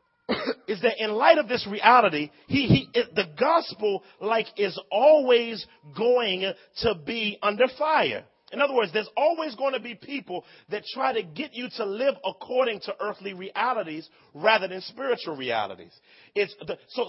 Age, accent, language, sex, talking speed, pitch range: 40-59, American, English, male, 160 wpm, 180-240 Hz